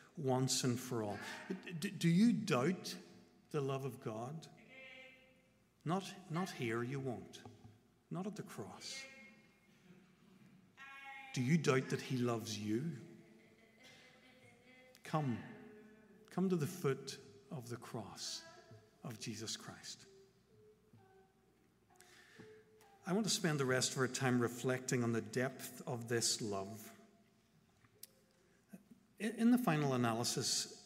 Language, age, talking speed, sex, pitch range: English, 50-69, 115 wpm, male, 125-190 Hz